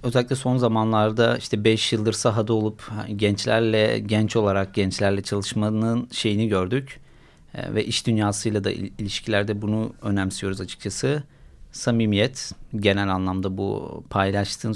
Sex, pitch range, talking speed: male, 105-120 Hz, 115 wpm